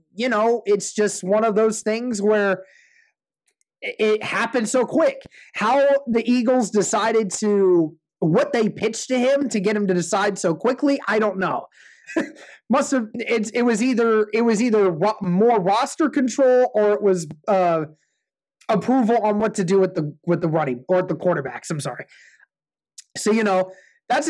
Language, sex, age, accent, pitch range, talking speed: English, male, 30-49, American, 175-220 Hz, 170 wpm